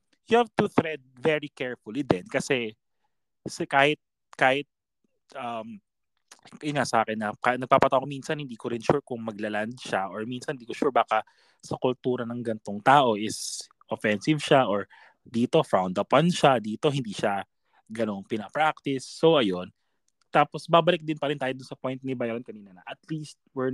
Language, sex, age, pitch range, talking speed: Filipino, male, 20-39, 120-155 Hz, 170 wpm